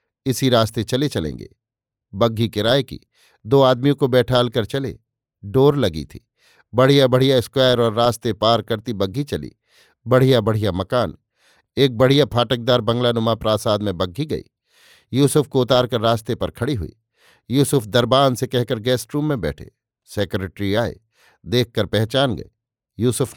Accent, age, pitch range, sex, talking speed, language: native, 50-69, 110-130 Hz, male, 145 wpm, Hindi